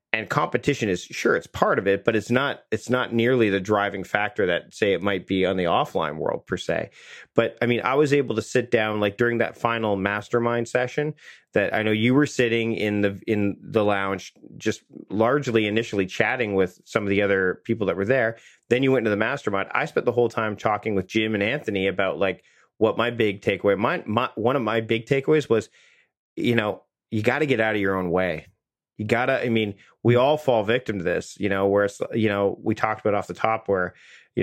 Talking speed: 230 wpm